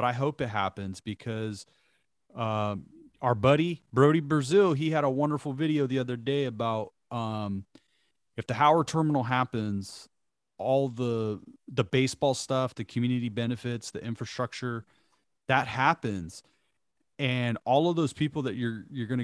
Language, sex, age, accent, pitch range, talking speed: English, male, 30-49, American, 110-135 Hz, 145 wpm